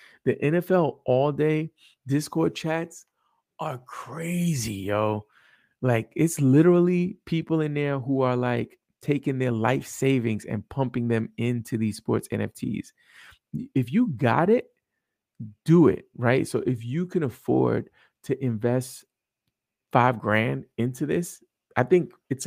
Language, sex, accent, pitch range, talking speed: English, male, American, 125-175 Hz, 135 wpm